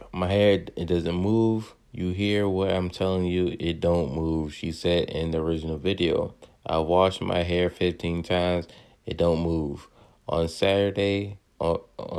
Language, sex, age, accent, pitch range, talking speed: English, male, 30-49, American, 85-95 Hz, 155 wpm